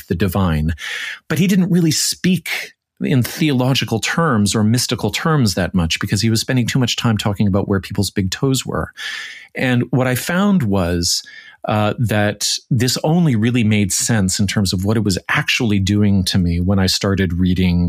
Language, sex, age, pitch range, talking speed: English, male, 40-59, 95-125 Hz, 185 wpm